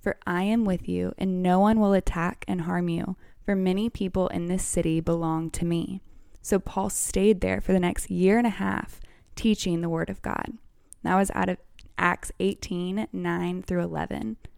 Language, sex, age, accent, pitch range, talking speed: English, female, 10-29, American, 175-205 Hz, 195 wpm